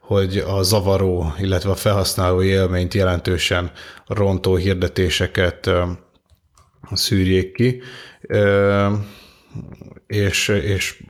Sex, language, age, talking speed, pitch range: male, Hungarian, 30-49, 70 wpm, 90-100 Hz